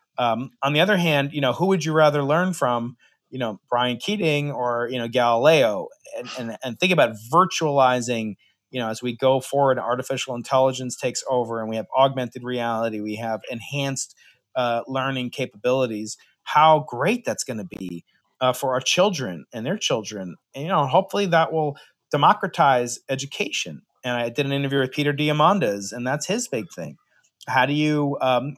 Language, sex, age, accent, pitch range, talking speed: English, male, 30-49, American, 125-145 Hz, 180 wpm